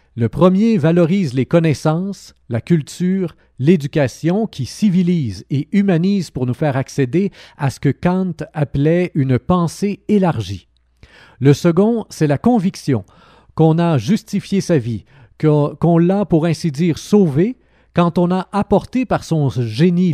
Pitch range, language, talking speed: 135-180 Hz, French, 140 wpm